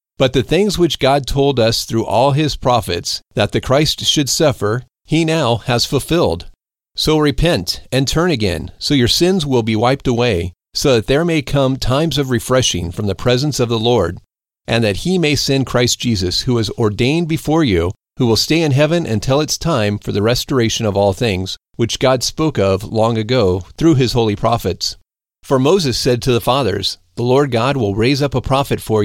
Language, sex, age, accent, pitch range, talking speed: English, male, 40-59, American, 105-145 Hz, 200 wpm